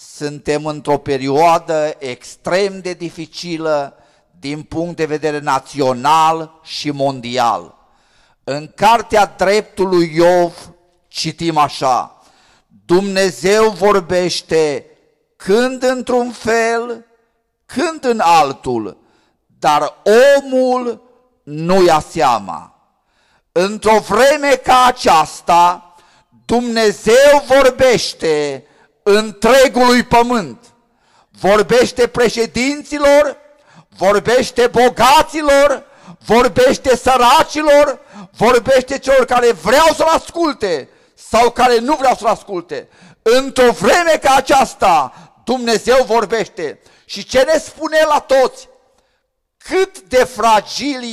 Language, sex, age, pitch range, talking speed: Romanian, male, 50-69, 175-265 Hz, 85 wpm